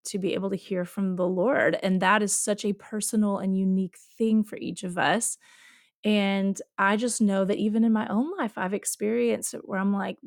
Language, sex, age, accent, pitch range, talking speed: English, female, 30-49, American, 195-235 Hz, 215 wpm